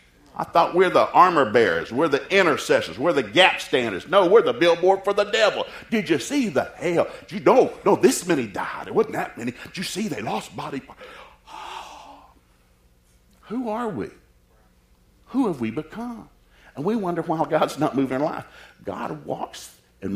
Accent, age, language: American, 60-79, English